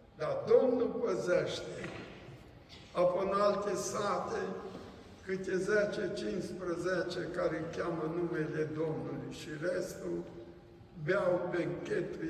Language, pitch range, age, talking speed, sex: Romanian, 160-205 Hz, 60-79, 80 wpm, male